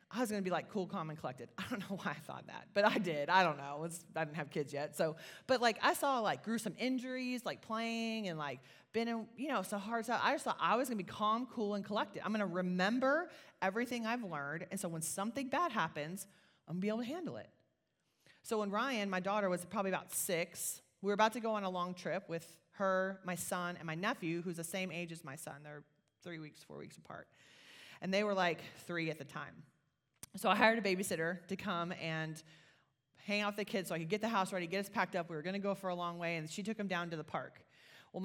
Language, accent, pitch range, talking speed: English, American, 170-225 Hz, 265 wpm